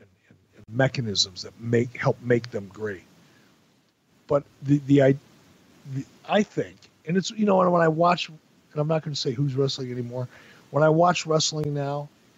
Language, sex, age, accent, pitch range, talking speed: English, male, 50-69, American, 130-170 Hz, 165 wpm